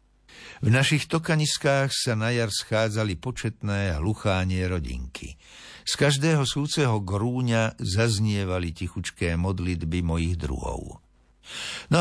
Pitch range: 85-125 Hz